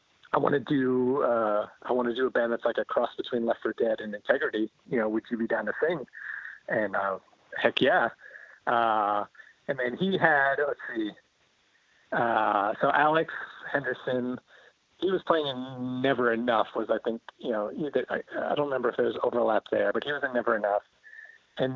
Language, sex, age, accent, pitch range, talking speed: English, male, 30-49, American, 115-140 Hz, 200 wpm